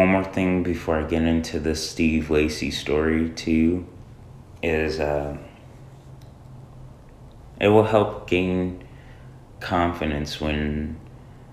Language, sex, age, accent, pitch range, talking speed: English, male, 30-49, American, 75-115 Hz, 105 wpm